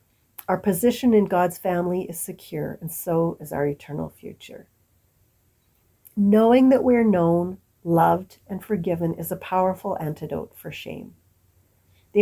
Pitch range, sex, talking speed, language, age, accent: 170-210 Hz, female, 135 wpm, English, 50-69, American